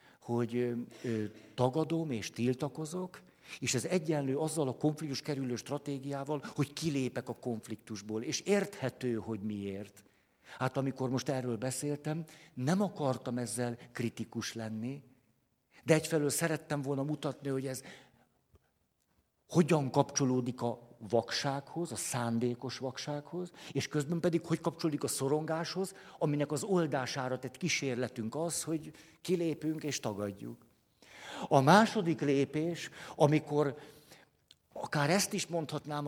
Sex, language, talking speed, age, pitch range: male, Hungarian, 120 wpm, 60-79, 125-160 Hz